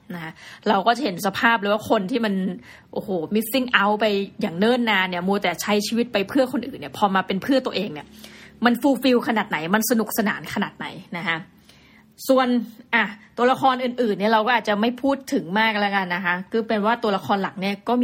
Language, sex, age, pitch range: Thai, female, 20-39, 200-245 Hz